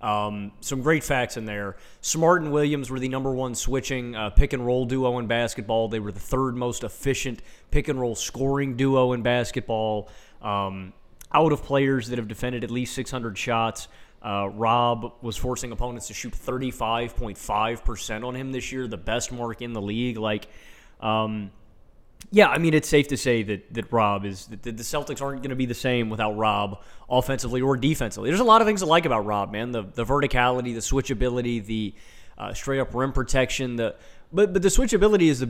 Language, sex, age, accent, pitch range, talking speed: English, male, 30-49, American, 110-135 Hz, 200 wpm